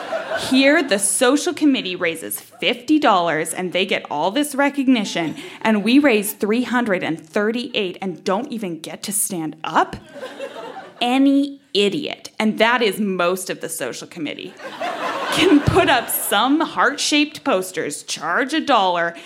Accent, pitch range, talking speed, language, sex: American, 180-265 Hz, 130 wpm, English, female